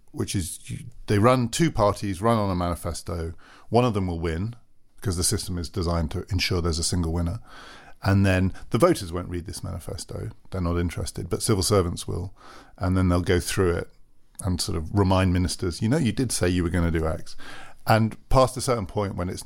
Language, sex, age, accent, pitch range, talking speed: English, male, 40-59, British, 90-105 Hz, 215 wpm